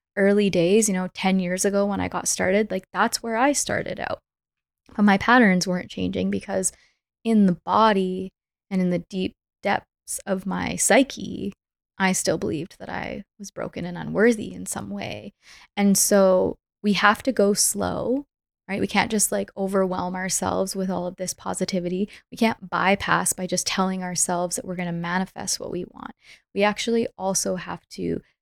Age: 20-39